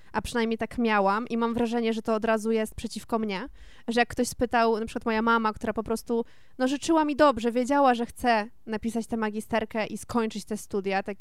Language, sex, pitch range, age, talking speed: Polish, female, 220-255 Hz, 20-39, 215 wpm